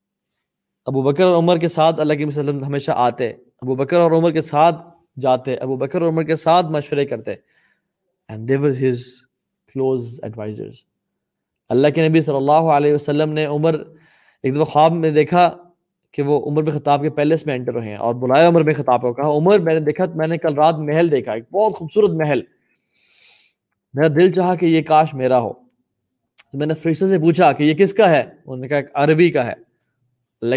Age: 20-39